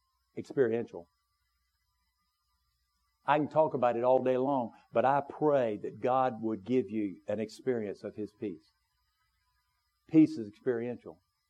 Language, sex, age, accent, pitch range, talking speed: English, male, 50-69, American, 115-150 Hz, 130 wpm